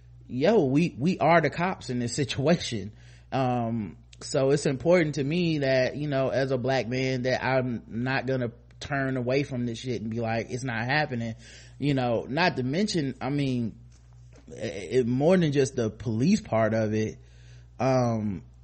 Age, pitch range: 20-39, 115-135 Hz